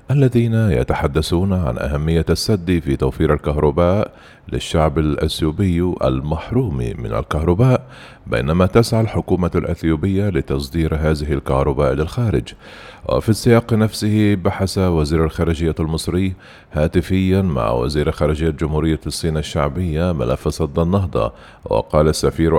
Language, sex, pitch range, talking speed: Arabic, male, 75-95 Hz, 105 wpm